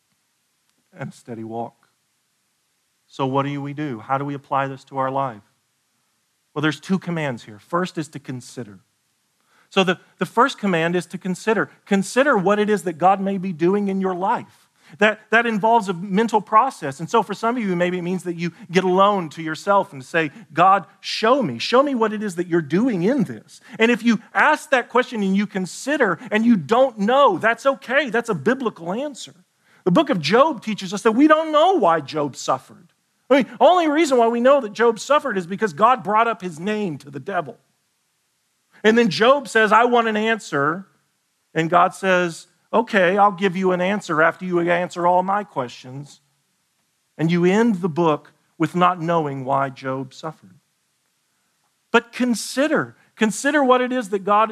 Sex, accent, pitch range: male, American, 165-225 Hz